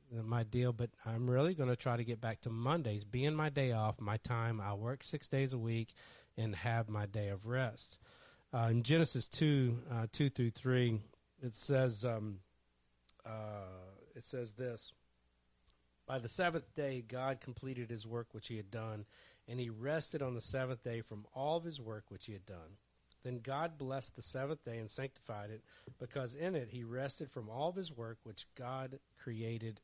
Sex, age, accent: male, 40-59, American